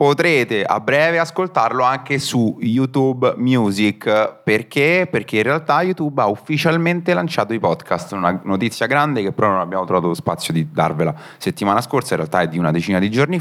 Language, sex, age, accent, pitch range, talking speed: Italian, male, 30-49, native, 95-140 Hz, 175 wpm